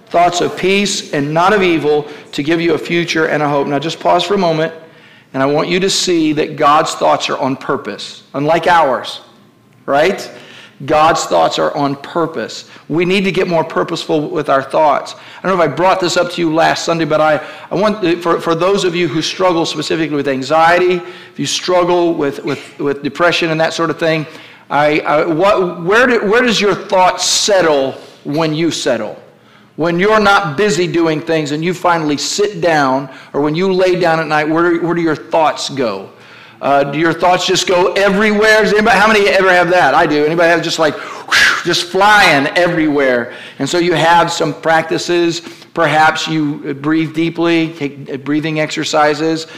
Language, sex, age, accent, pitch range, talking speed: English, male, 50-69, American, 155-180 Hz, 195 wpm